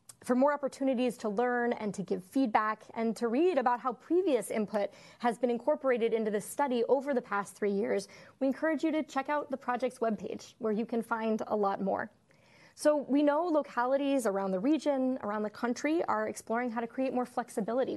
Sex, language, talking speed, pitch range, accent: female, English, 200 wpm, 225-275 Hz, American